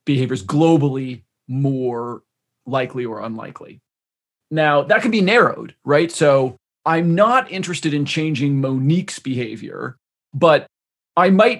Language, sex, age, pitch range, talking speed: English, male, 30-49, 130-155 Hz, 120 wpm